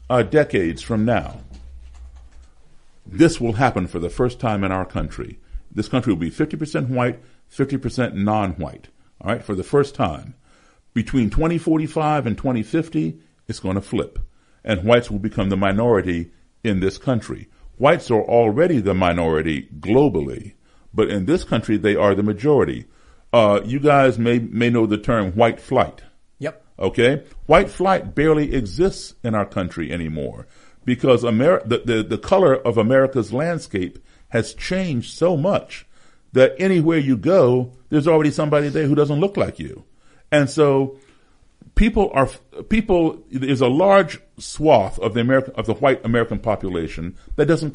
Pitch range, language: 105-150 Hz, English